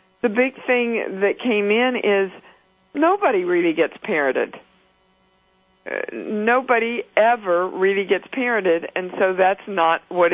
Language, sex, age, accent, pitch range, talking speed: English, female, 50-69, American, 175-235 Hz, 120 wpm